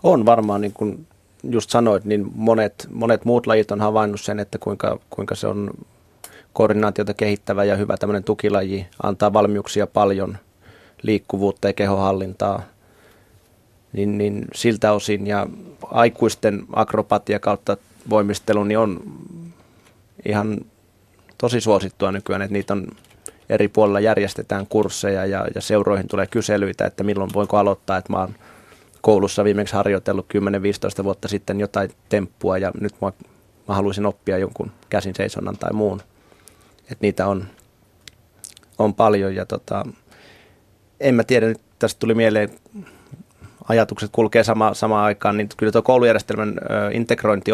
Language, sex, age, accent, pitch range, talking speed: Finnish, male, 30-49, native, 100-110 Hz, 135 wpm